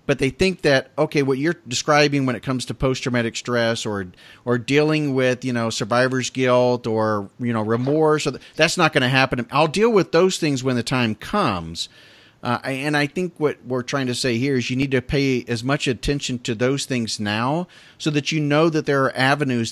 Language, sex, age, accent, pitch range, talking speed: English, male, 40-59, American, 115-140 Hz, 220 wpm